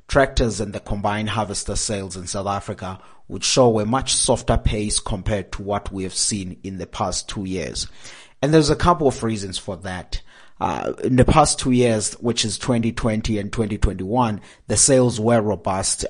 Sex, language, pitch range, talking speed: male, English, 105-125 Hz, 185 wpm